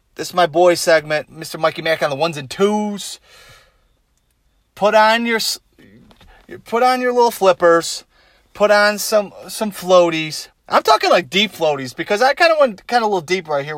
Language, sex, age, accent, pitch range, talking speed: English, male, 30-49, American, 145-190 Hz, 185 wpm